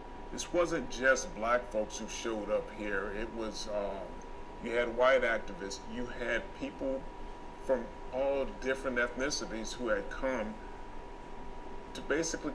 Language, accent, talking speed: English, American, 135 wpm